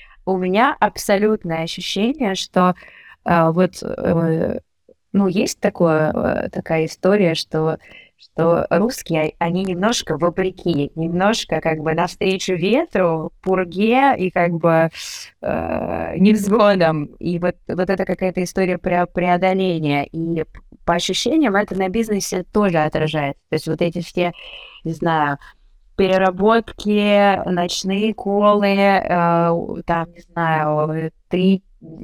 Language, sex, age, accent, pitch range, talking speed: Russian, female, 20-39, native, 170-205 Hz, 110 wpm